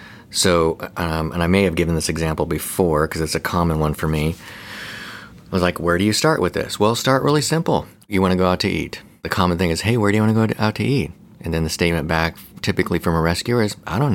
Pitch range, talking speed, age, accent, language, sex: 85-110 Hz, 265 wpm, 30-49, American, English, male